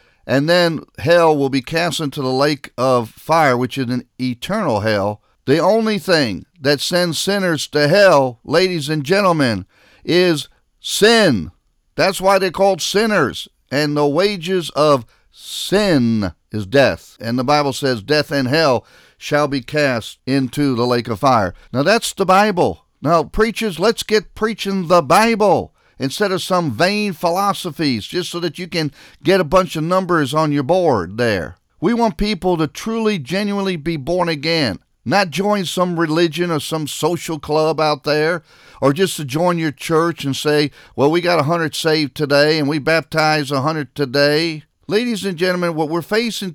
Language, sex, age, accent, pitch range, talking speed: English, male, 50-69, American, 140-180 Hz, 170 wpm